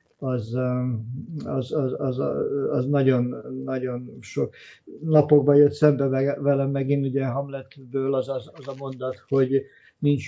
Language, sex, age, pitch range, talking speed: Hungarian, male, 50-69, 130-150 Hz, 130 wpm